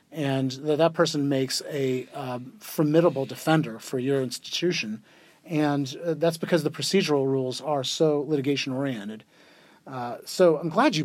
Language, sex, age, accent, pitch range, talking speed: English, male, 40-59, American, 135-170 Hz, 140 wpm